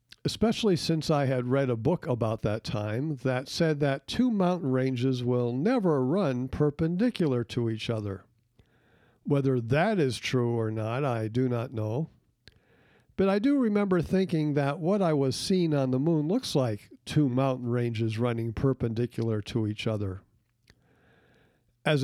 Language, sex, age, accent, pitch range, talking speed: English, male, 50-69, American, 120-170 Hz, 155 wpm